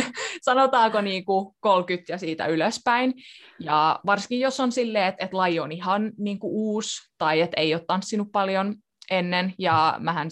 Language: Finnish